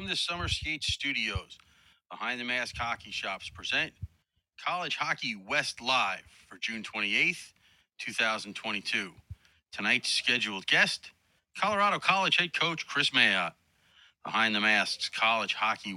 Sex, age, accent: male, 30-49, American